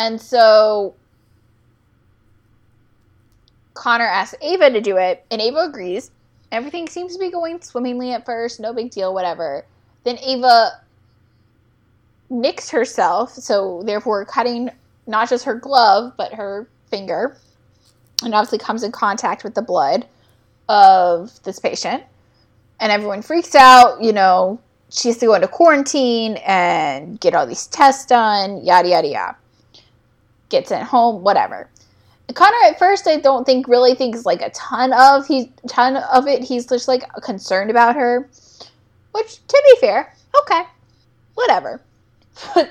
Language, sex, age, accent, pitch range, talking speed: English, female, 10-29, American, 195-275 Hz, 145 wpm